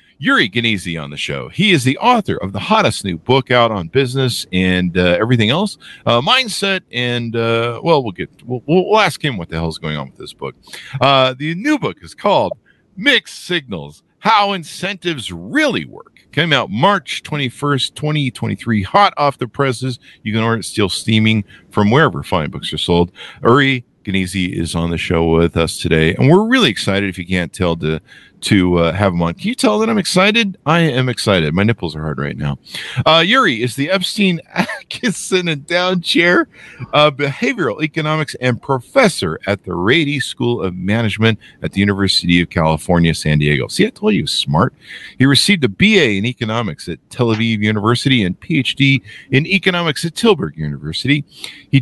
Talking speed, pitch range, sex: 190 wpm, 95-155 Hz, male